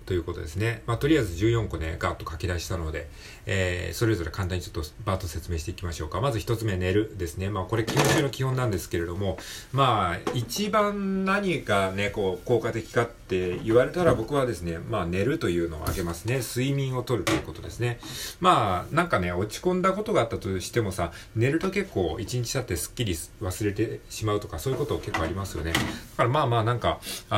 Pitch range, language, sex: 90-120 Hz, Japanese, male